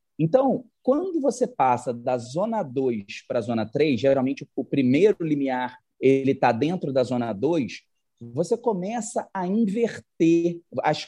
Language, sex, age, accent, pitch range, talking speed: Portuguese, male, 30-49, Brazilian, 130-200 Hz, 135 wpm